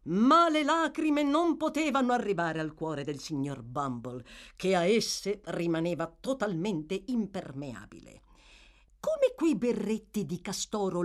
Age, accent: 50-69, native